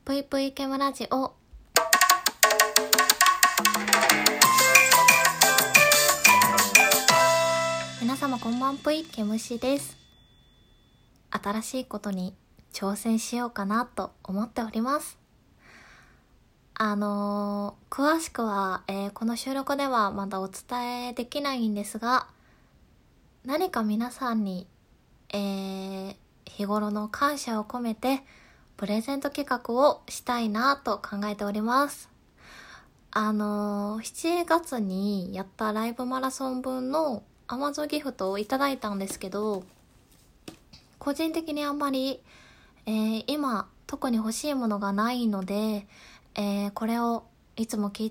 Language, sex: Japanese, female